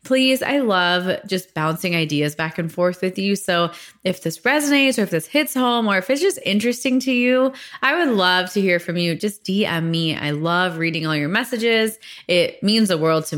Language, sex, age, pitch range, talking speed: English, female, 20-39, 165-215 Hz, 215 wpm